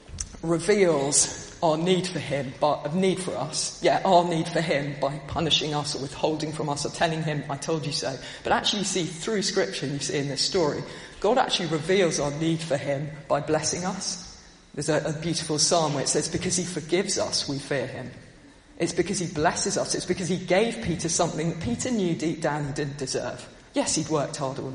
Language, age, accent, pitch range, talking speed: English, 40-59, British, 140-170 Hz, 215 wpm